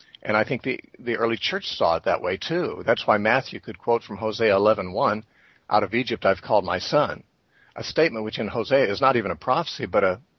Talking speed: 230 wpm